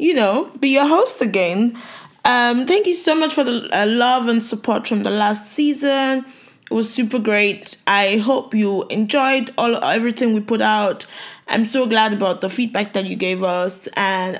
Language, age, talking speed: English, 20-39, 185 wpm